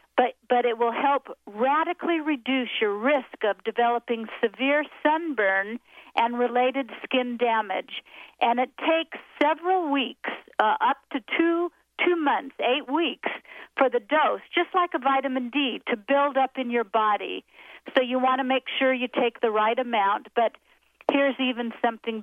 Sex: female